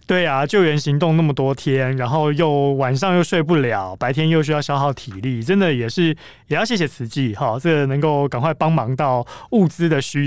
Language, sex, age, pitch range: Chinese, male, 30-49, 120-165 Hz